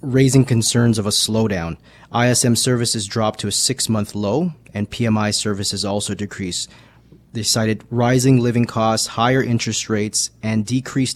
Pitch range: 105-125 Hz